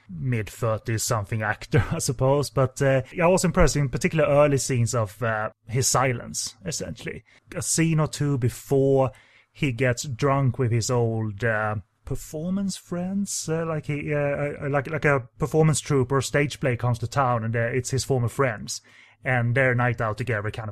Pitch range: 115-140 Hz